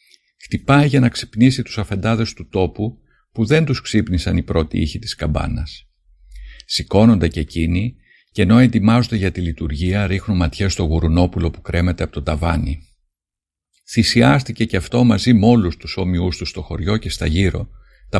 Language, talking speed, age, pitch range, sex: Greek, 165 wpm, 50-69, 85-115 Hz, male